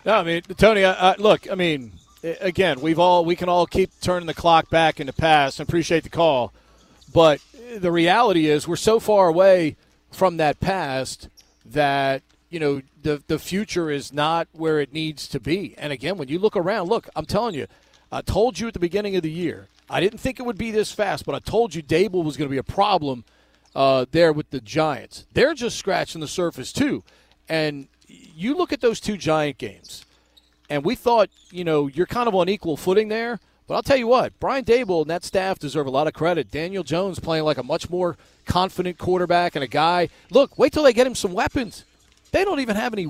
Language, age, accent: English, 40-59, American